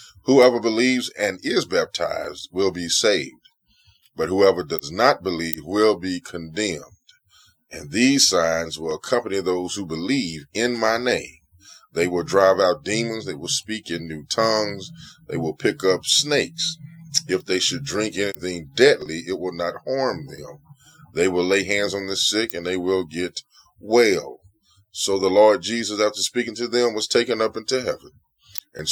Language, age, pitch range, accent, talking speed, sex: English, 20-39, 85-110 Hz, American, 165 wpm, male